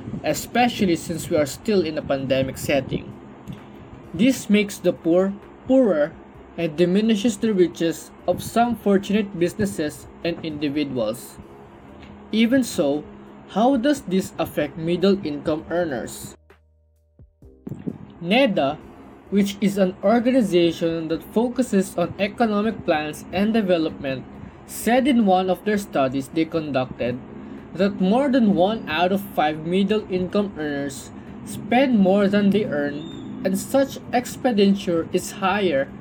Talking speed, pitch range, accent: 120 wpm, 155-210 Hz, Filipino